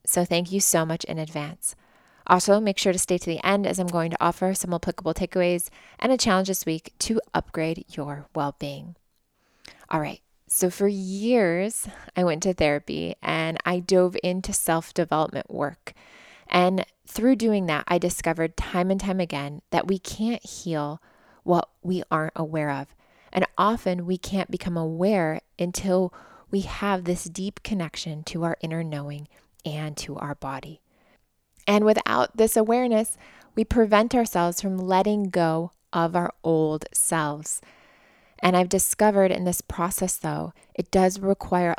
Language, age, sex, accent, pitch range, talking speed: English, 20-39, female, American, 165-195 Hz, 160 wpm